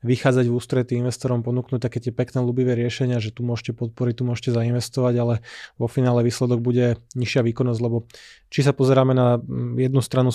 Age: 20-39